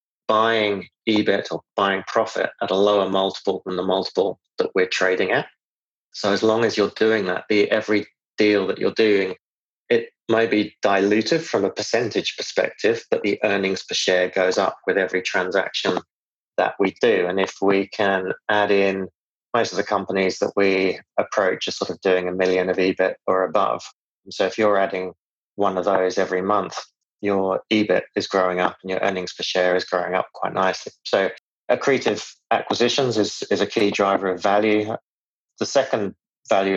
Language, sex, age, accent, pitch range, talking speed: English, male, 30-49, British, 95-105 Hz, 180 wpm